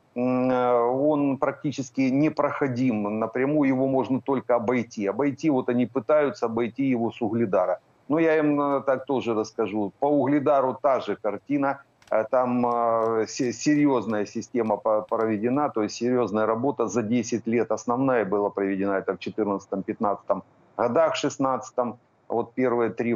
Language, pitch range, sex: Ukrainian, 110-135 Hz, male